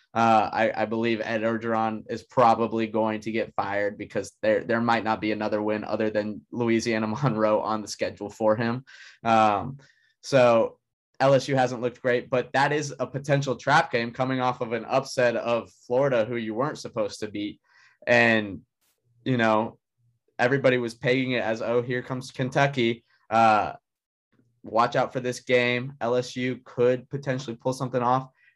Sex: male